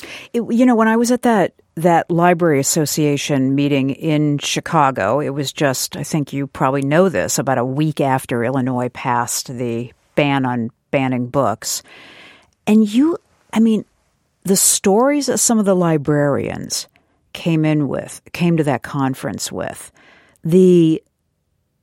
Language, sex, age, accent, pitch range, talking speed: English, female, 50-69, American, 140-185 Hz, 145 wpm